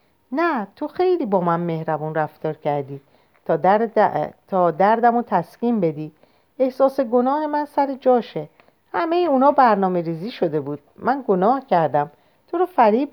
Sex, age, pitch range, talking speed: female, 50-69, 155-245 Hz, 150 wpm